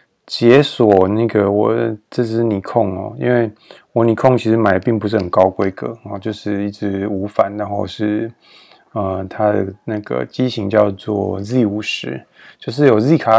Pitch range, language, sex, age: 100-115 Hz, Chinese, male, 20-39